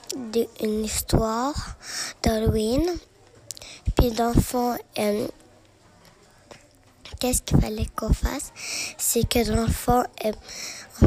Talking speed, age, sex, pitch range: 85 wpm, 10-29, female, 225-255 Hz